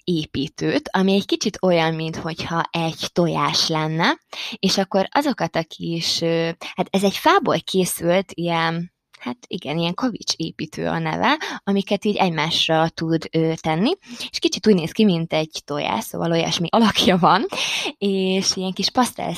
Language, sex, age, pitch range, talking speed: Hungarian, female, 20-39, 165-200 Hz, 150 wpm